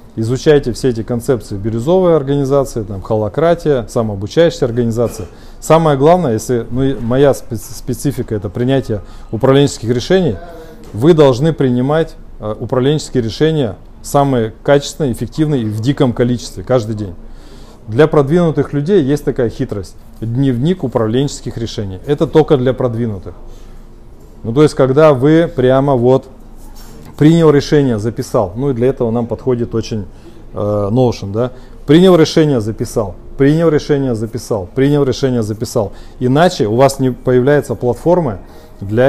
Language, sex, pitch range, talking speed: Russian, male, 115-145 Hz, 125 wpm